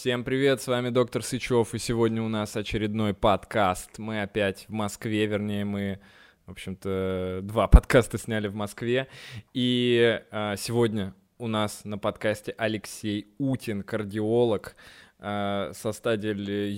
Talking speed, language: 125 wpm, Russian